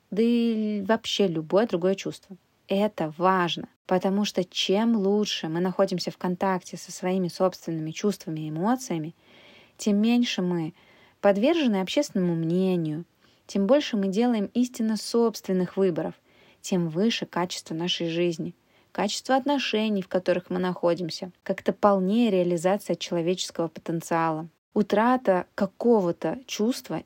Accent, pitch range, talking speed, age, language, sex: native, 175-210 Hz, 120 wpm, 20-39, Russian, female